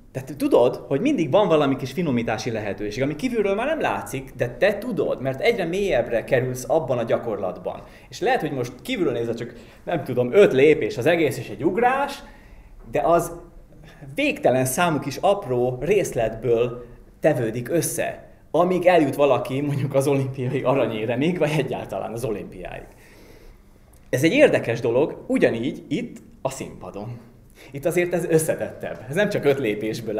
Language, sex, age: Hungarian, male, 30-49